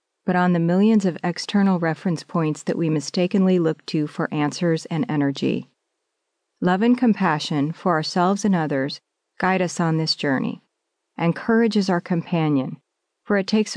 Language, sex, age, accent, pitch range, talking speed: English, female, 40-59, American, 165-200 Hz, 160 wpm